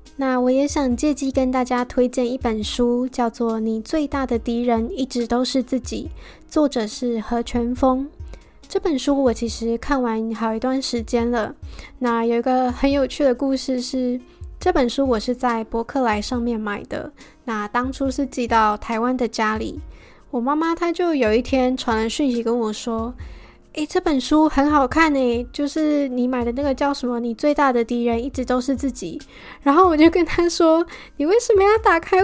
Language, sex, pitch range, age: Chinese, female, 235-280 Hz, 10-29